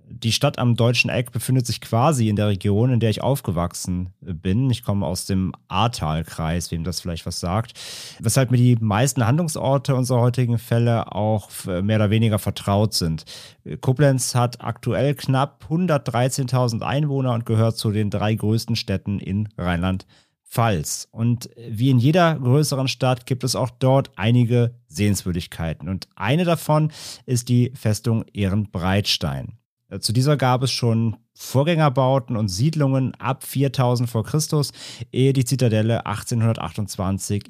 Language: German